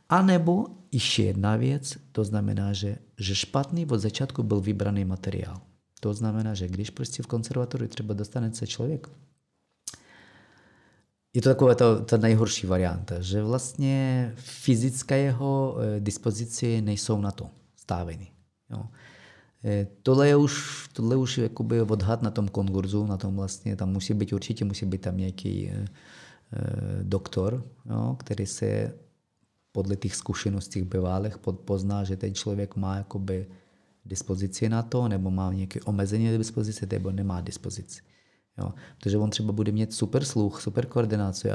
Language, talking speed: Czech, 145 wpm